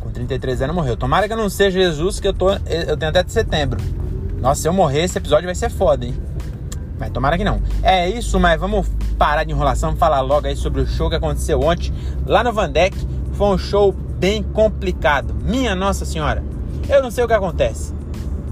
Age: 20-39